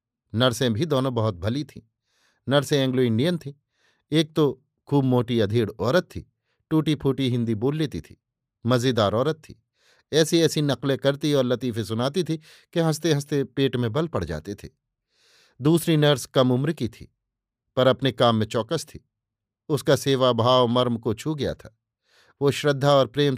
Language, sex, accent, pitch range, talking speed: Hindi, male, native, 120-140 Hz, 170 wpm